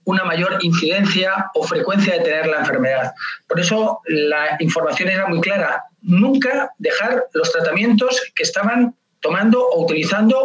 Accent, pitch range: Spanish, 165-210 Hz